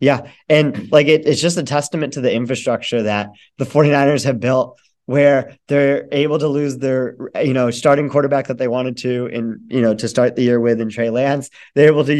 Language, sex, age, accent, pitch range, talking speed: English, male, 20-39, American, 120-140 Hz, 210 wpm